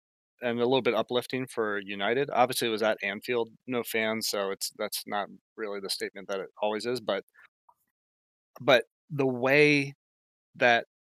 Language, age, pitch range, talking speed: English, 30-49, 105-125 Hz, 160 wpm